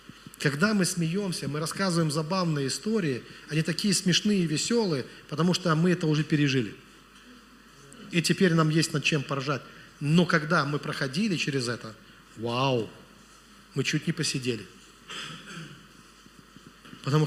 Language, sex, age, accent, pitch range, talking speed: Russian, male, 40-59, native, 140-190 Hz, 130 wpm